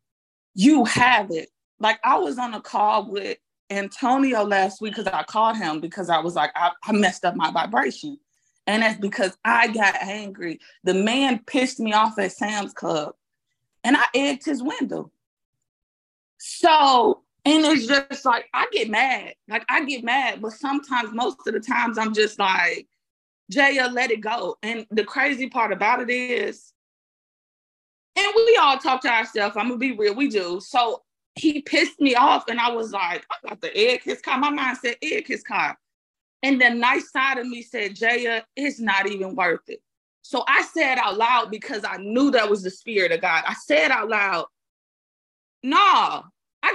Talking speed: 185 wpm